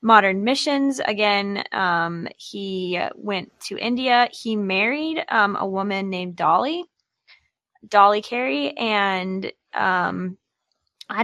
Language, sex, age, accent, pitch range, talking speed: English, female, 10-29, American, 185-225 Hz, 105 wpm